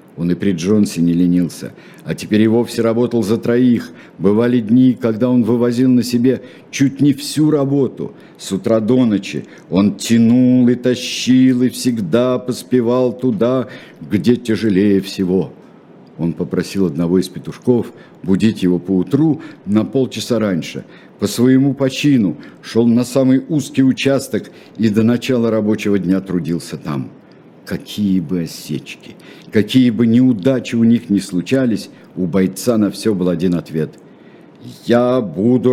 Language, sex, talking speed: Russian, male, 140 wpm